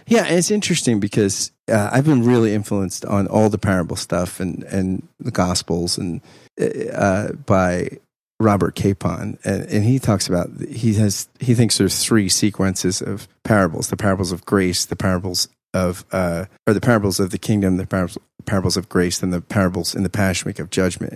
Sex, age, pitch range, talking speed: male, 30-49, 95-125 Hz, 190 wpm